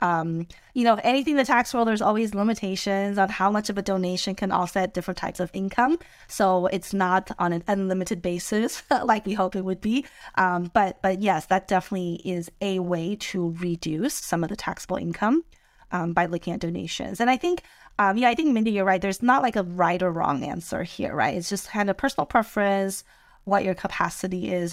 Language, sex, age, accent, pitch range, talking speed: English, female, 20-39, American, 175-210 Hz, 210 wpm